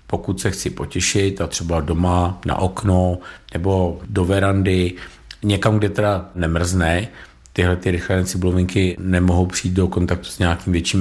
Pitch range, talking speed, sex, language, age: 90-100 Hz, 145 wpm, male, Czech, 50-69